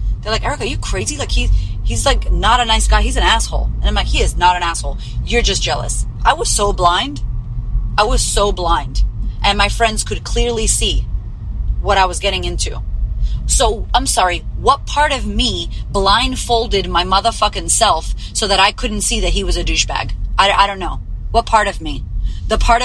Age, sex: 30-49, female